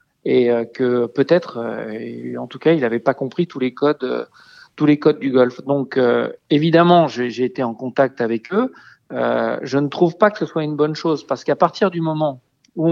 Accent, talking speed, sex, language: French, 200 wpm, male, French